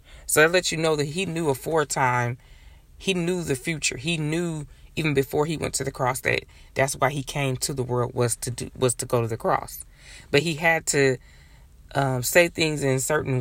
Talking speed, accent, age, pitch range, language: 215 wpm, American, 20-39, 120-140 Hz, English